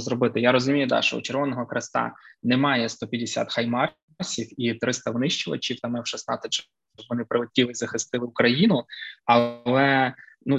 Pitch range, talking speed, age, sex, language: 115-130 Hz, 140 wpm, 20-39, male, Ukrainian